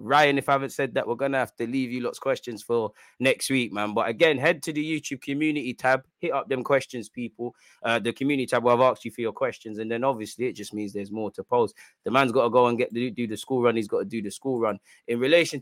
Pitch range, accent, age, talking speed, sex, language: 115-145 Hz, British, 20-39, 290 wpm, male, English